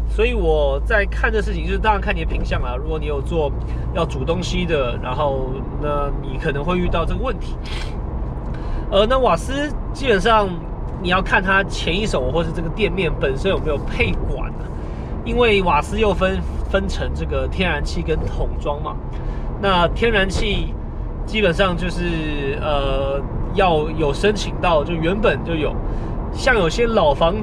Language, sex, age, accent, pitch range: Chinese, male, 20-39, native, 145-205 Hz